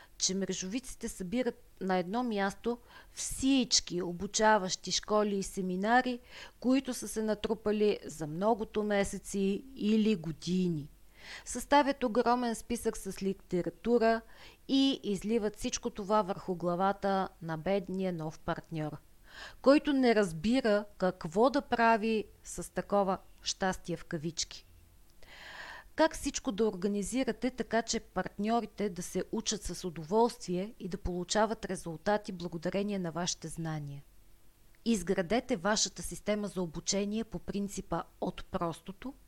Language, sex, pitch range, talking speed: Bulgarian, female, 180-225 Hz, 115 wpm